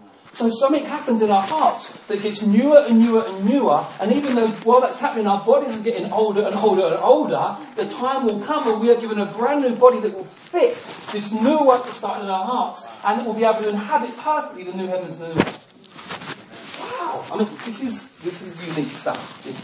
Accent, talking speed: British, 235 wpm